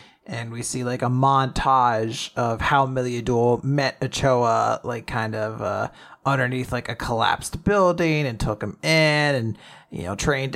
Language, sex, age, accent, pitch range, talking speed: English, male, 30-49, American, 110-140 Hz, 160 wpm